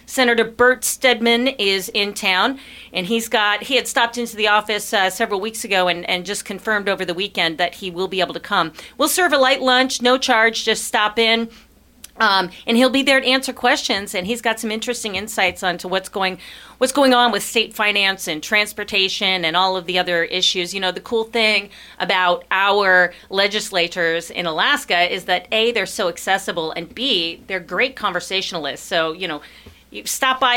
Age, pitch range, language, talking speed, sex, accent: 40-59, 180-230 Hz, English, 195 wpm, female, American